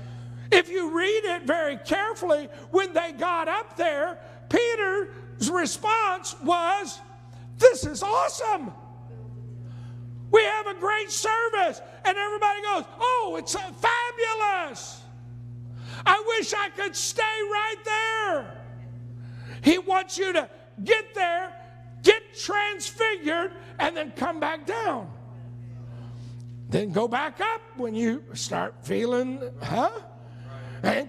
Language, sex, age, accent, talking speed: English, male, 50-69, American, 110 wpm